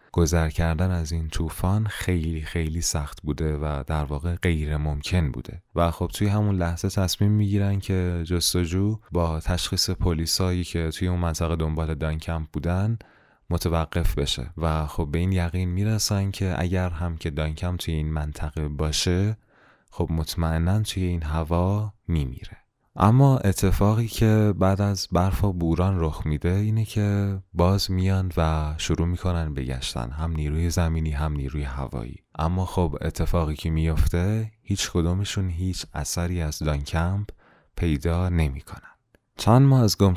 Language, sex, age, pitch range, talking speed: Persian, male, 20-39, 80-95 Hz, 150 wpm